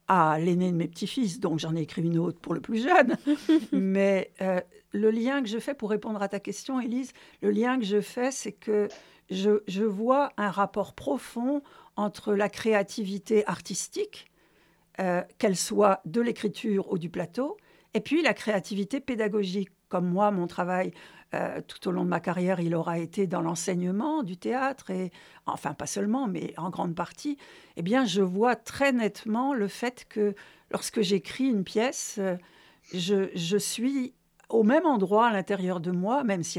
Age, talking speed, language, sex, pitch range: 60-79, 180 wpm, French, female, 180-235 Hz